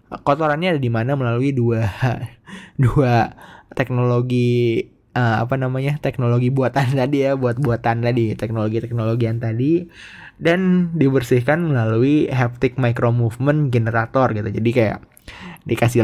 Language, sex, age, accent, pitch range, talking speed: Indonesian, male, 20-39, native, 115-145 Hz, 125 wpm